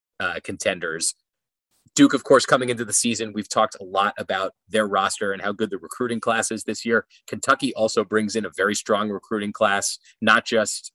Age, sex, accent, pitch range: 30-49, male, American, 100-125 Hz